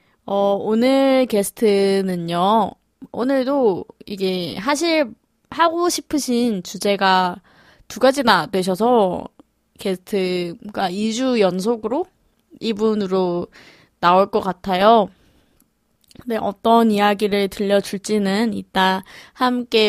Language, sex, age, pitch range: Korean, female, 20-39, 195-250 Hz